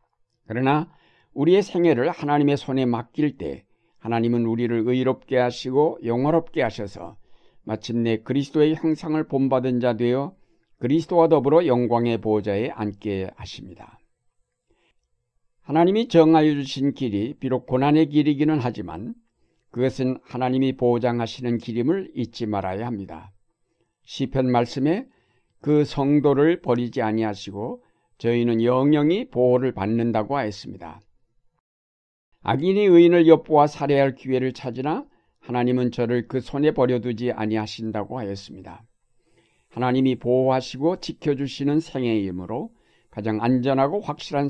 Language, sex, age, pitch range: Korean, male, 60-79, 115-145 Hz